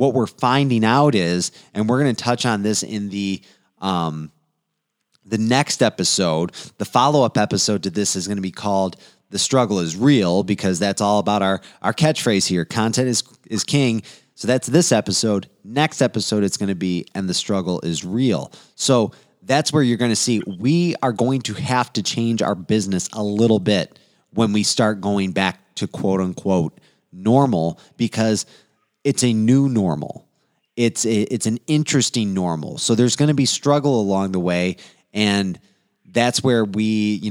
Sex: male